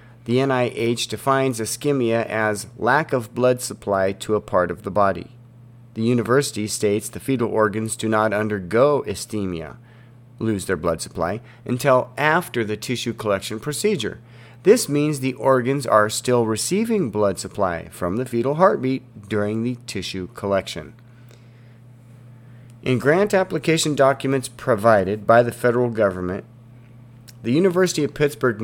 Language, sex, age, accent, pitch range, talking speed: English, male, 40-59, American, 105-125 Hz, 135 wpm